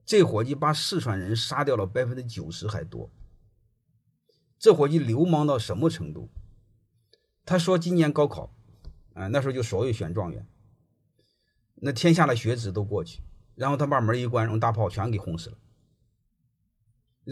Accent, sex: native, male